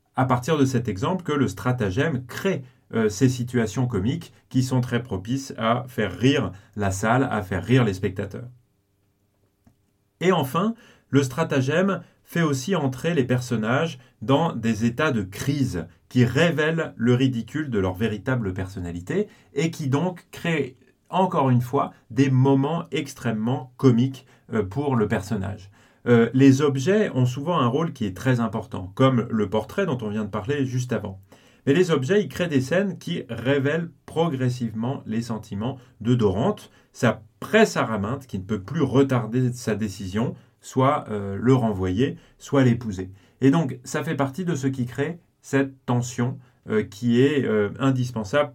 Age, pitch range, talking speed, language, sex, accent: 30-49, 110-140 Hz, 160 wpm, French, male, French